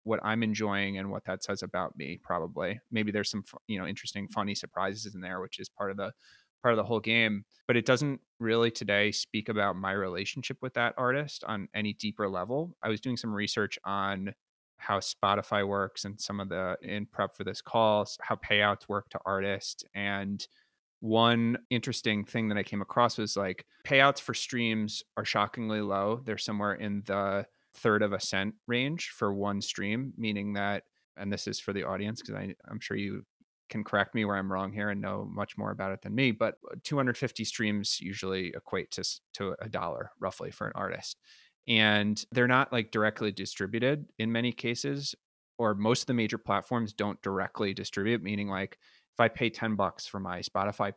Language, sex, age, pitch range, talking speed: English, male, 30-49, 100-115 Hz, 195 wpm